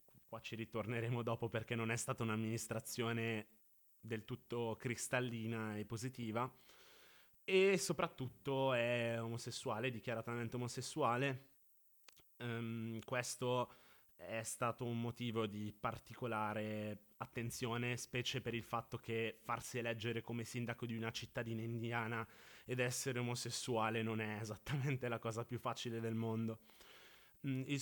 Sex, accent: male, native